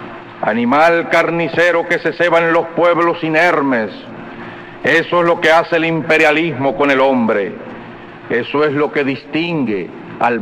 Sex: male